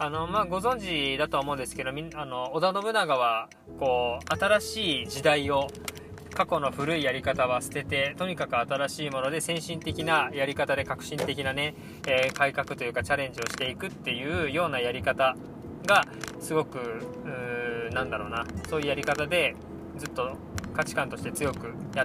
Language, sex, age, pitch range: Japanese, male, 20-39, 130-160 Hz